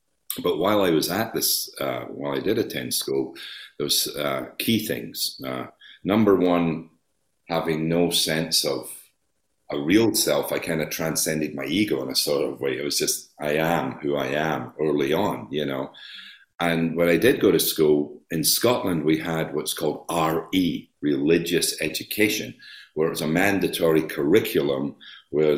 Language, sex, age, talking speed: English, male, 50-69, 170 wpm